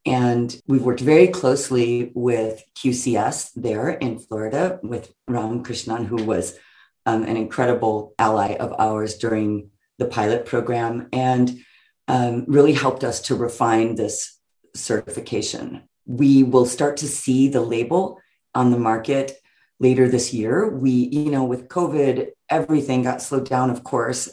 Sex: female